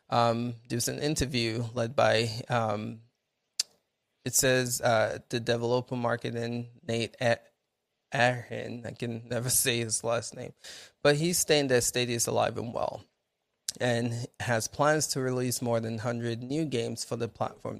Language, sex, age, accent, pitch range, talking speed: English, male, 20-39, American, 115-130 Hz, 150 wpm